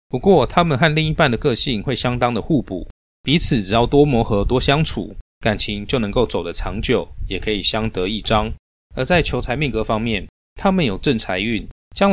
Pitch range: 100-140 Hz